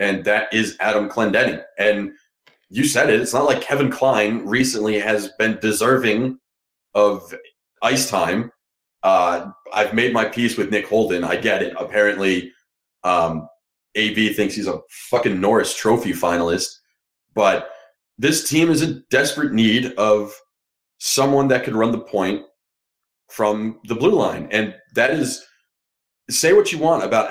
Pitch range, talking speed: 105-130 Hz, 150 wpm